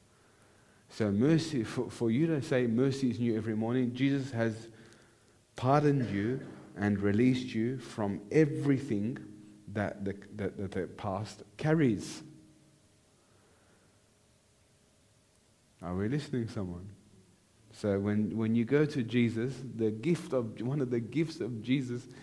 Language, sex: English, male